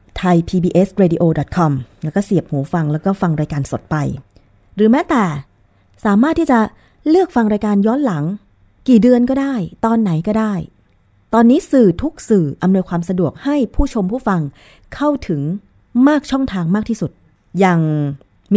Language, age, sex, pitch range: Thai, 20-39, female, 155-225 Hz